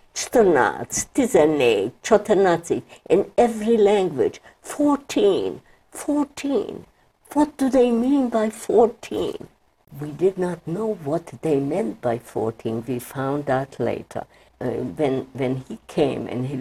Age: 60-79